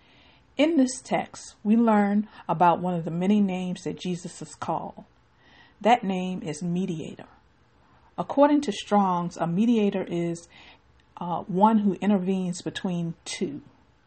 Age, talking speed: 50-69, 130 wpm